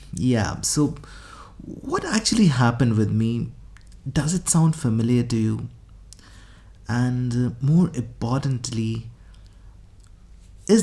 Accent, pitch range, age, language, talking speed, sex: Indian, 100-135 Hz, 30-49, English, 95 wpm, male